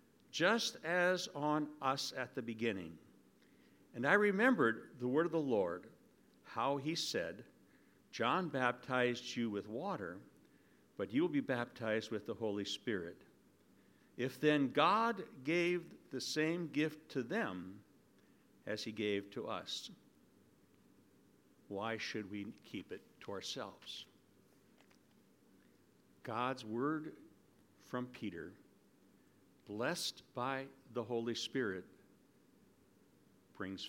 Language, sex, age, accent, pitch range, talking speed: English, male, 60-79, American, 110-155 Hz, 110 wpm